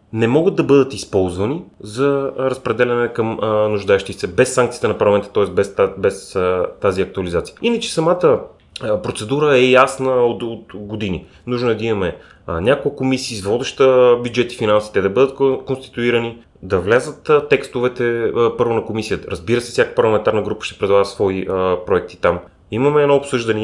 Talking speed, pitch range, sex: 145 wpm, 105-130 Hz, male